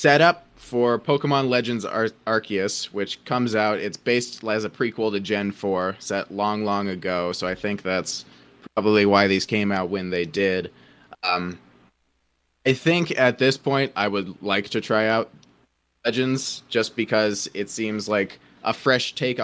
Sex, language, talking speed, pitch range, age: male, English, 165 wpm, 95-125 Hz, 20-39